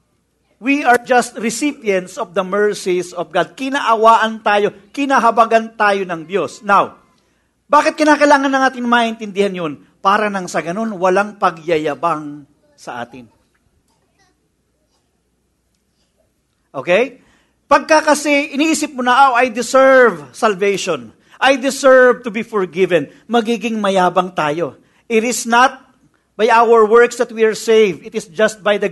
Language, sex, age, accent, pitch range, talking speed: English, male, 50-69, Filipino, 200-265 Hz, 130 wpm